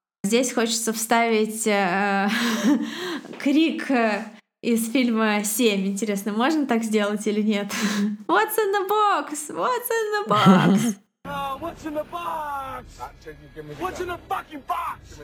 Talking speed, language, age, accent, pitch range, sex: 100 wpm, Russian, 20-39, native, 210-270 Hz, female